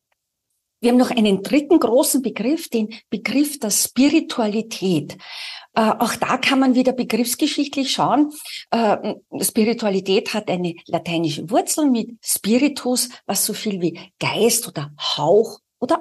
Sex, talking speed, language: female, 130 wpm, German